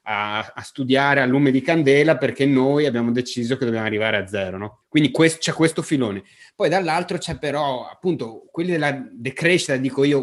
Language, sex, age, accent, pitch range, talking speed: Italian, male, 30-49, native, 125-155 Hz, 190 wpm